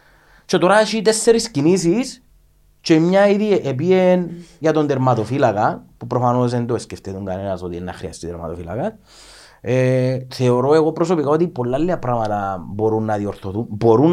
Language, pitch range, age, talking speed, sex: Greek, 110-155 Hz, 30-49, 130 wpm, male